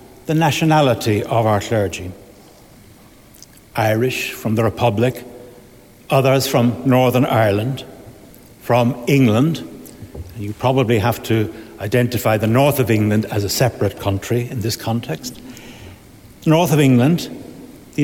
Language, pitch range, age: English, 110-135 Hz, 70-89